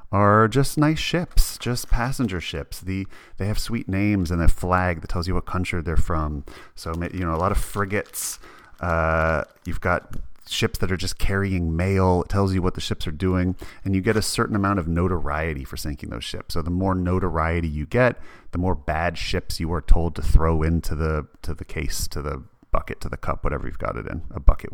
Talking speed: 220 wpm